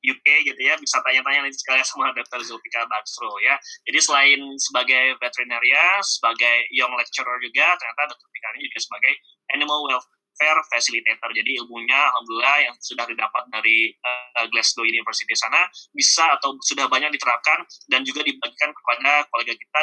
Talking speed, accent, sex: 150 wpm, native, male